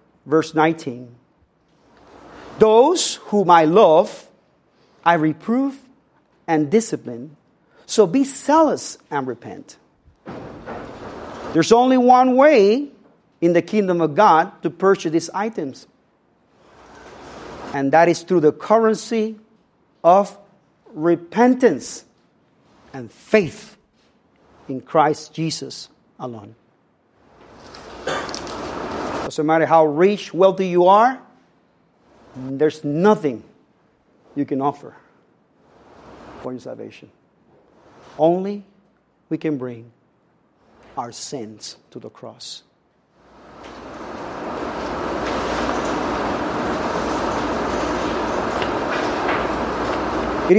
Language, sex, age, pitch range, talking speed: English, male, 50-69, 155-220 Hz, 80 wpm